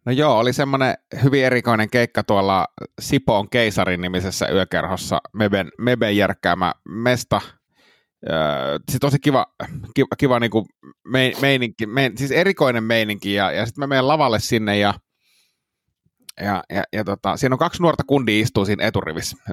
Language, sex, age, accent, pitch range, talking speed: Finnish, male, 30-49, native, 100-135 Hz, 145 wpm